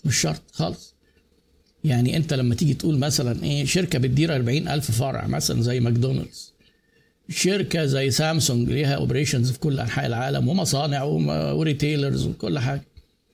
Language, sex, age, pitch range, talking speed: Arabic, male, 60-79, 140-185 Hz, 140 wpm